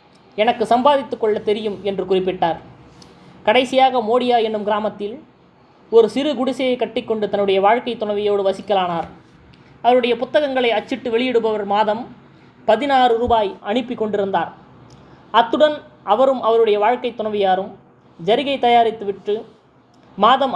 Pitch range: 205-245 Hz